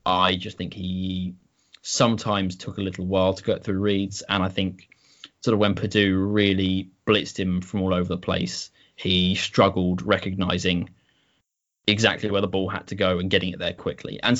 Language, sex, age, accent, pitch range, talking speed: English, male, 20-39, British, 90-100 Hz, 185 wpm